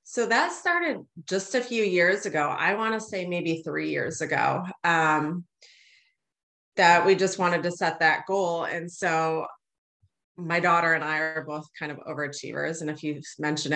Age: 30-49